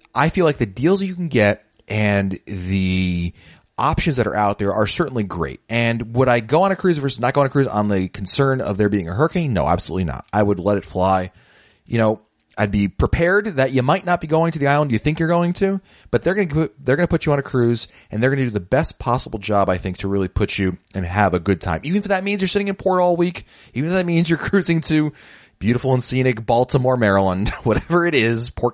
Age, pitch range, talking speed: 30-49, 100-145 Hz, 260 wpm